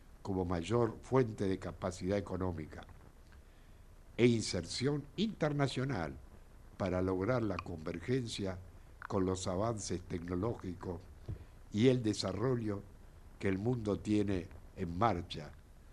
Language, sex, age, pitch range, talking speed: Spanish, male, 60-79, 90-130 Hz, 100 wpm